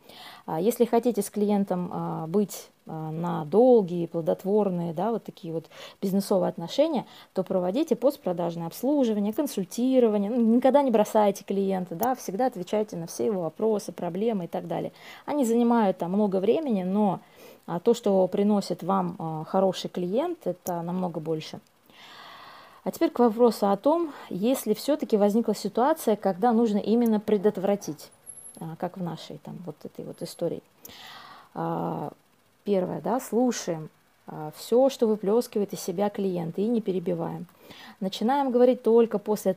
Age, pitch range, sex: 20-39, 185-235 Hz, female